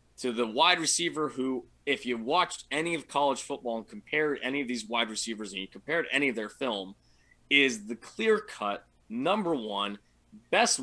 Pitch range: 115-150 Hz